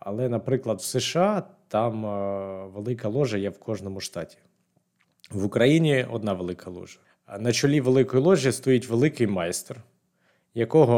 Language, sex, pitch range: Ukrainian, male, 105-130 Hz